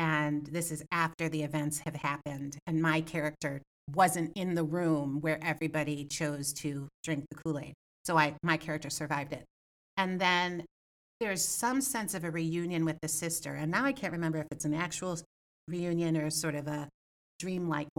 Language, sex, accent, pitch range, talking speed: English, female, American, 155-200 Hz, 185 wpm